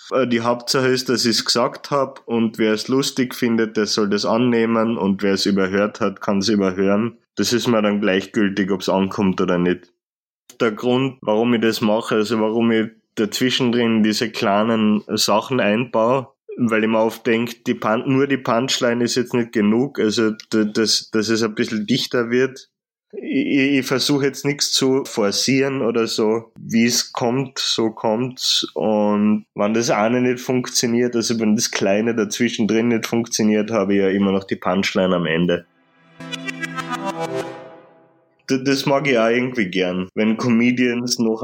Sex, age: male, 20-39